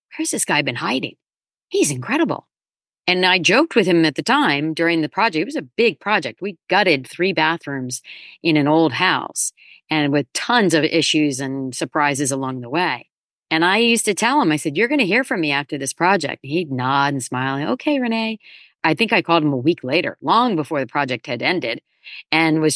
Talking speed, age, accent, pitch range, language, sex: 210 wpm, 40-59, American, 145-185 Hz, English, female